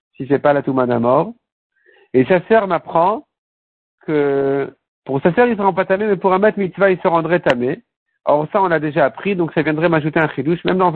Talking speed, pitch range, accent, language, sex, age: 240 wpm, 145-190 Hz, French, French, male, 50-69